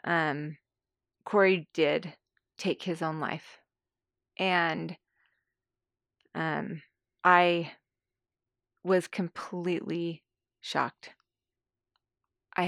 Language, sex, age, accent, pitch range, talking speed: English, female, 20-39, American, 120-180 Hz, 65 wpm